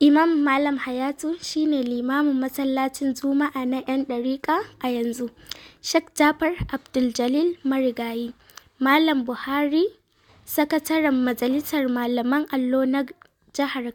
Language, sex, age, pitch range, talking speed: Arabic, female, 20-39, 250-300 Hz, 90 wpm